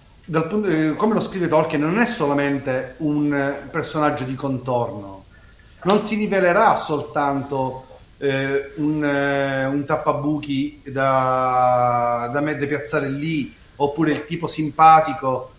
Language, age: Italian, 40-59